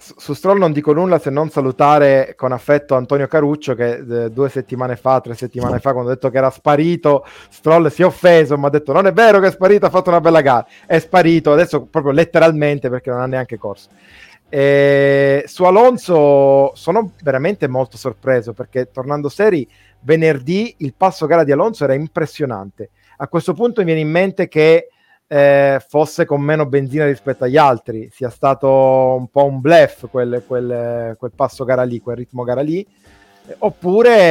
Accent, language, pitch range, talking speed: native, Italian, 125-155 Hz, 180 wpm